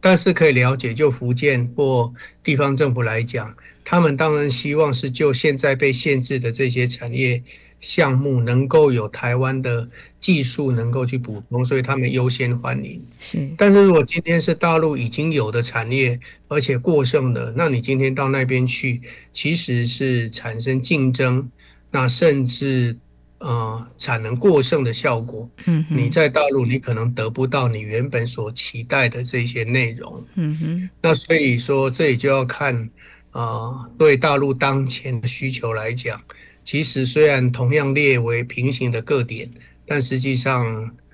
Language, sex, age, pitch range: Chinese, male, 50-69, 120-140 Hz